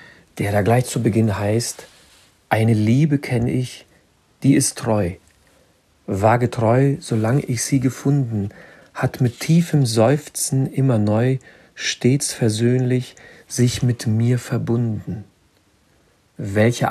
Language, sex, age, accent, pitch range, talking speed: German, male, 50-69, German, 110-135 Hz, 115 wpm